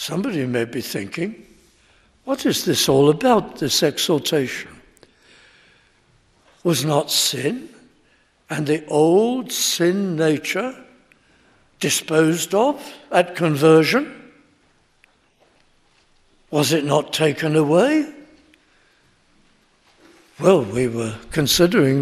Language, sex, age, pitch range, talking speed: English, male, 60-79, 150-200 Hz, 85 wpm